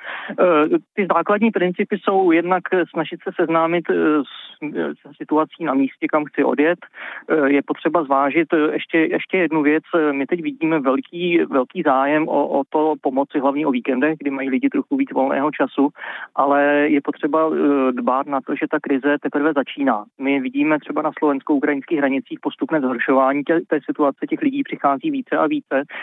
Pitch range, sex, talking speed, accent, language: 140-160 Hz, male, 165 wpm, native, Czech